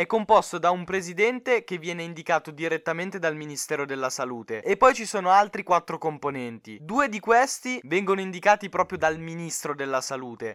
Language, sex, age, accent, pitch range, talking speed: Italian, male, 20-39, native, 150-190 Hz, 170 wpm